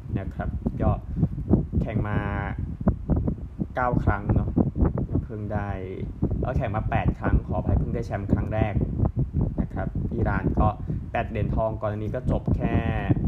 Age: 20-39